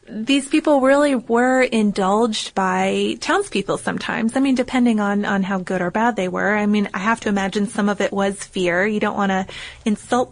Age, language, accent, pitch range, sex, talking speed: 20-39, English, American, 195-245 Hz, female, 205 wpm